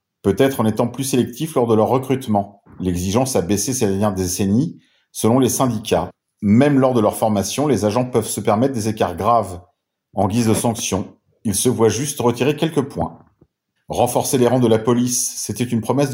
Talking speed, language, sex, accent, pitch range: 190 wpm, French, male, French, 105-130 Hz